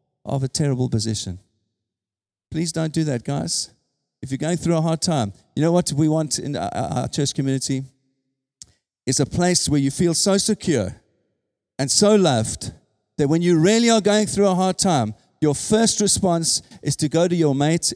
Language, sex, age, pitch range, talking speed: English, male, 40-59, 120-165 Hz, 185 wpm